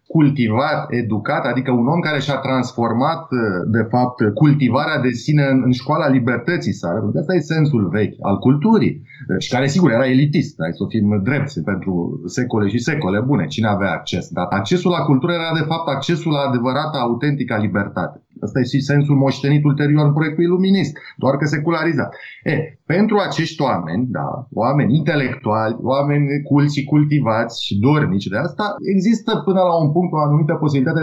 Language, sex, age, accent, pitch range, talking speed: Romanian, male, 30-49, native, 130-170 Hz, 175 wpm